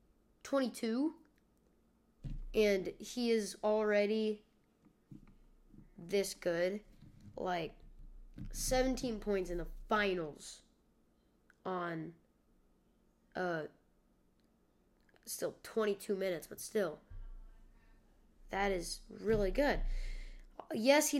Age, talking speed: 10-29, 75 wpm